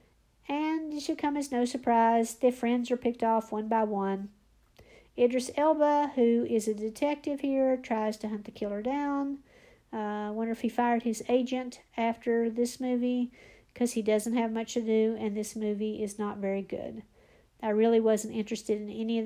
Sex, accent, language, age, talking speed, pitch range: female, American, English, 50-69, 185 wpm, 210-245 Hz